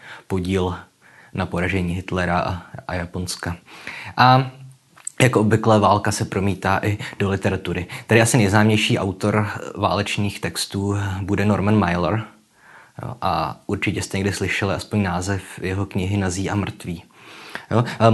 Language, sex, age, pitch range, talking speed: Czech, male, 20-39, 95-105 Hz, 120 wpm